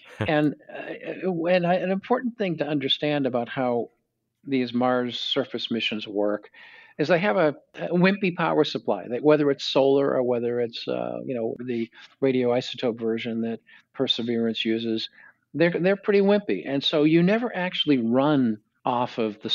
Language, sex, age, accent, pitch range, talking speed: English, male, 50-69, American, 115-150 Hz, 155 wpm